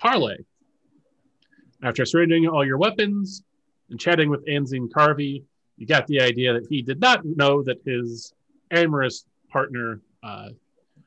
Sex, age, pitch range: male, 30-49, 120-165 Hz